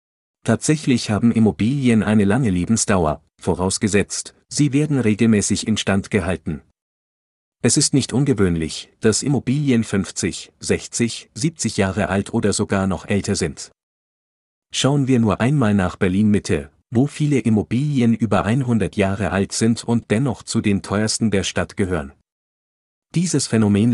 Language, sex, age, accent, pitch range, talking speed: German, male, 50-69, German, 100-125 Hz, 130 wpm